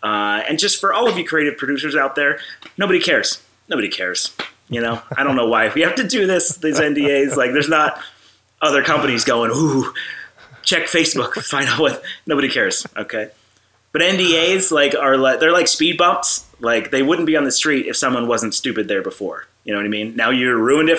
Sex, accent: male, American